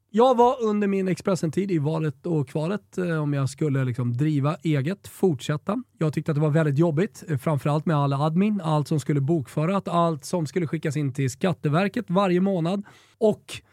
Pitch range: 140-195 Hz